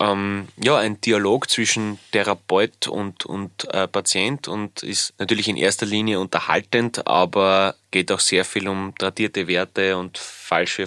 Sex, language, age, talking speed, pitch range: male, German, 20-39, 145 wpm, 95-115 Hz